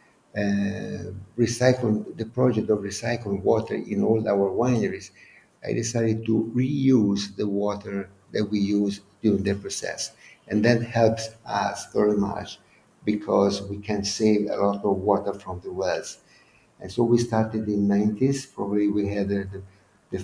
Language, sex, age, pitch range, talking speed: English, male, 50-69, 100-115 Hz, 155 wpm